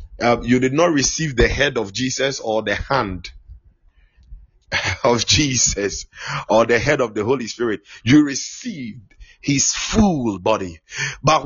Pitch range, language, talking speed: 95-160 Hz, English, 140 wpm